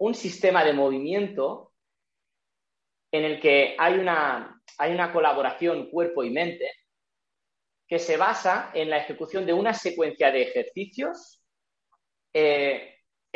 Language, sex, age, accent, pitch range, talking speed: Spanish, male, 30-49, Spanish, 155-215 Hz, 115 wpm